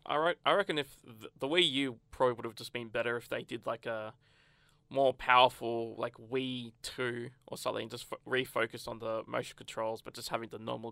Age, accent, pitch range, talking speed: 20-39, Australian, 120-145 Hz, 200 wpm